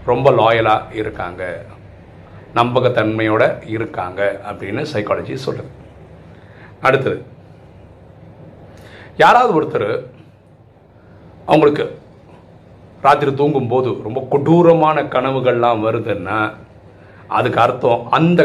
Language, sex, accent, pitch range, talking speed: Tamil, male, native, 105-140 Hz, 70 wpm